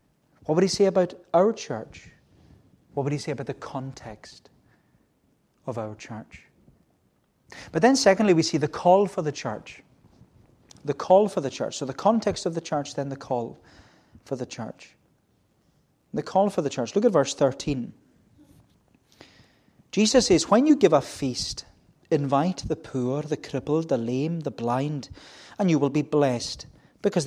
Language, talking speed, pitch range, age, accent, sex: English, 165 wpm, 135-180 Hz, 30-49, British, male